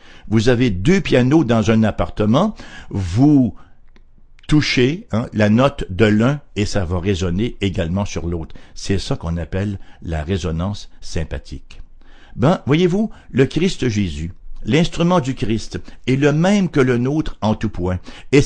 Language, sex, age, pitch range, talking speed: English, male, 60-79, 95-130 Hz, 150 wpm